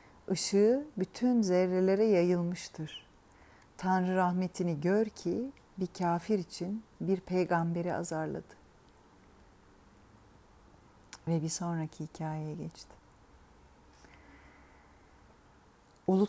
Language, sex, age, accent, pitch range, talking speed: Turkish, female, 40-59, native, 160-215 Hz, 75 wpm